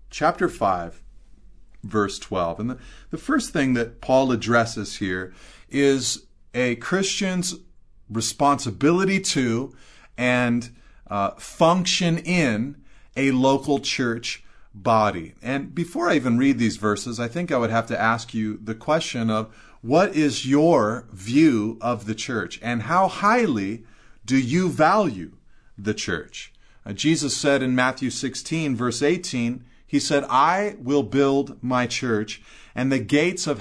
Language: English